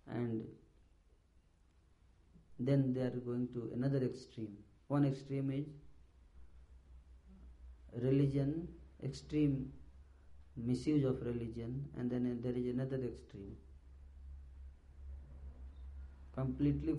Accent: native